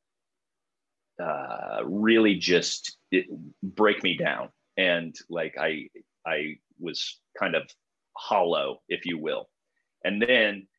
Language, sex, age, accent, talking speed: English, male, 30-49, American, 110 wpm